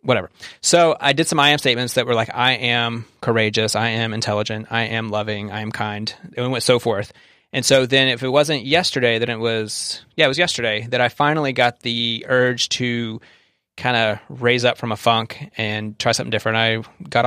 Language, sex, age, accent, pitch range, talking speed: English, male, 30-49, American, 115-130 Hz, 220 wpm